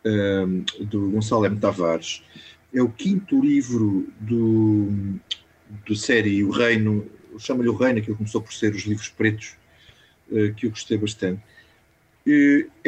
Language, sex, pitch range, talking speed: Portuguese, male, 105-130 Hz, 140 wpm